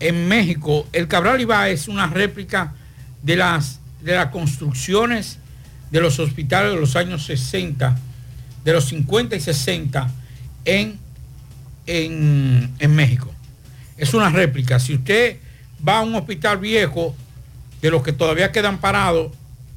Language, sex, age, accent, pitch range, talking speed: Spanish, male, 60-79, American, 130-190 Hz, 135 wpm